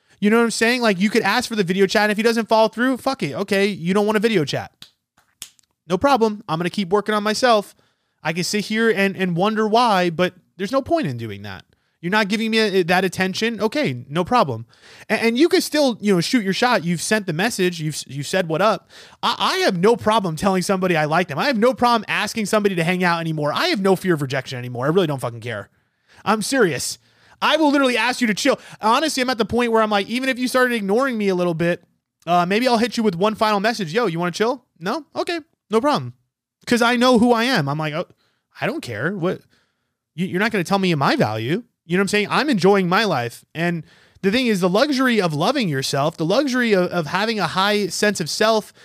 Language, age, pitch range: English, 20-39, 175-230 Hz